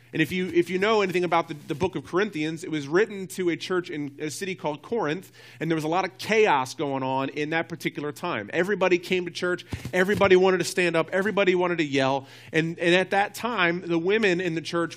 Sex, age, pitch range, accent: male, 40-59, 150-195 Hz, American